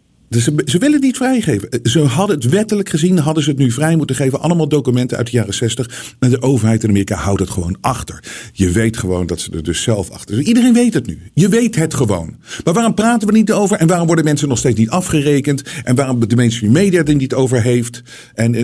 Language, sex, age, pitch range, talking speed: Dutch, male, 50-69, 110-155 Hz, 250 wpm